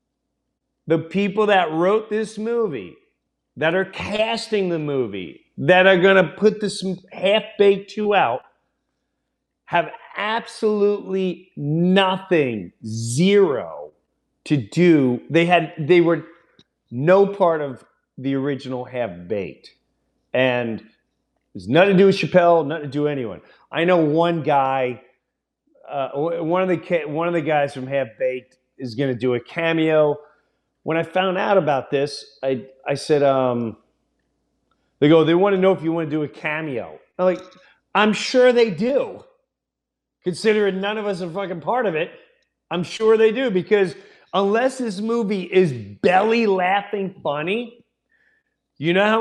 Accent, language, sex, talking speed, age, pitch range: American, English, male, 150 wpm, 40-59, 145-200 Hz